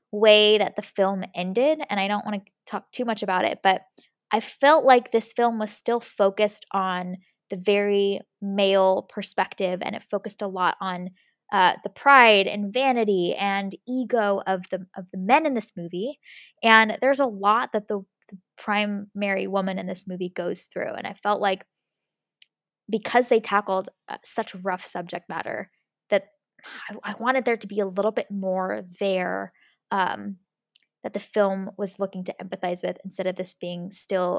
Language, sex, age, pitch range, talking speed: English, female, 10-29, 185-210 Hz, 180 wpm